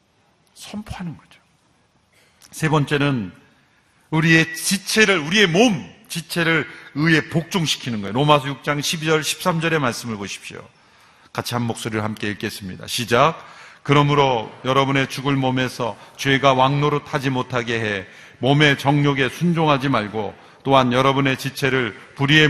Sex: male